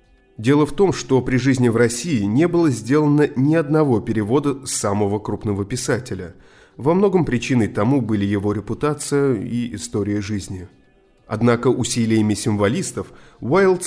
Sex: male